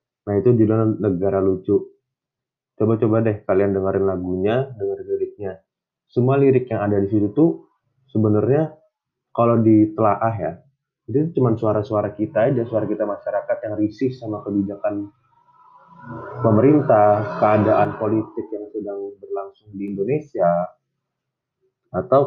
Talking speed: 120 wpm